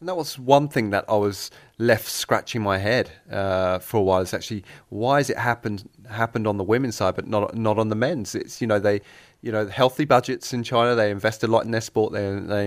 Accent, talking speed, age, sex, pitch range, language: British, 245 wpm, 30-49, male, 100-115 Hz, English